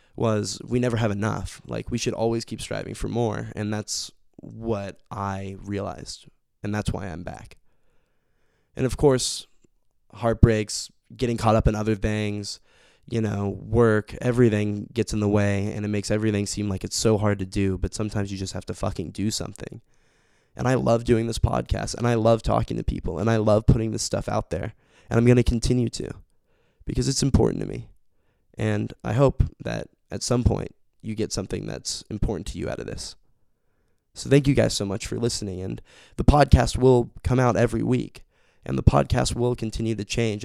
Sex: male